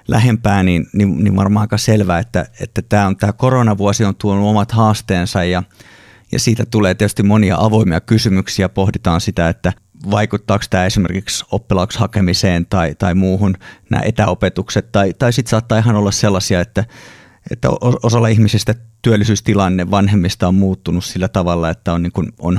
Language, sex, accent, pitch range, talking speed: Finnish, male, native, 95-110 Hz, 145 wpm